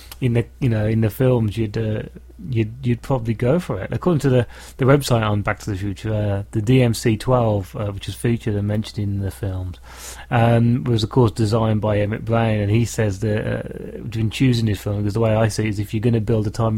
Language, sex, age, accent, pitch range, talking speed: English, male, 30-49, British, 105-125 Hz, 245 wpm